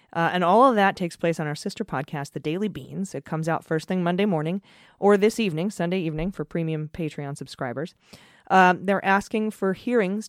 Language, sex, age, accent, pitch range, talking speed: English, female, 30-49, American, 155-195 Hz, 205 wpm